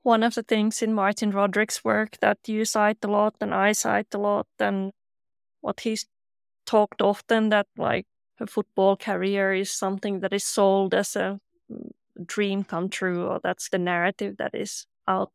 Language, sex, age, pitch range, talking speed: English, female, 20-39, 190-230 Hz, 175 wpm